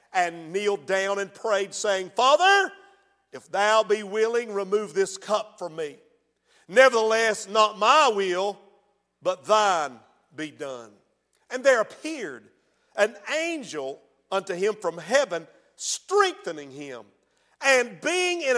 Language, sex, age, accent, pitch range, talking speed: English, male, 50-69, American, 205-270 Hz, 125 wpm